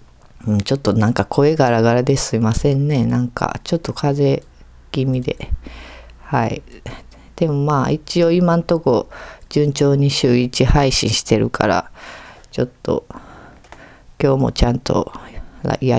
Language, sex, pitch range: Japanese, female, 125-170 Hz